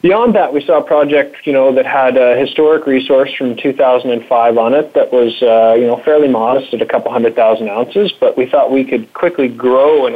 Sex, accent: male, American